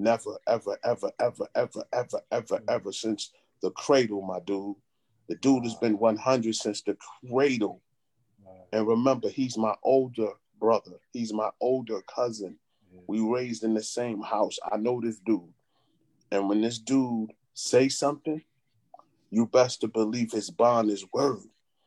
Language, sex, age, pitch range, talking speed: English, male, 30-49, 110-140 Hz, 150 wpm